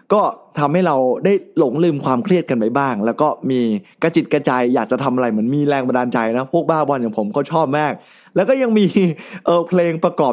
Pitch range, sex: 125-170 Hz, male